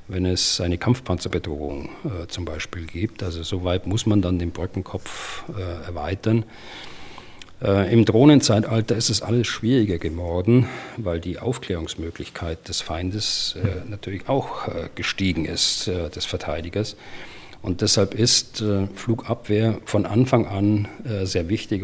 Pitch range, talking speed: 90-110 Hz, 135 wpm